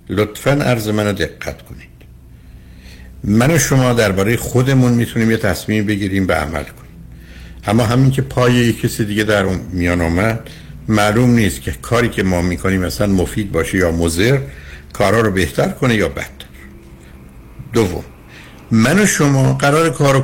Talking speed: 150 wpm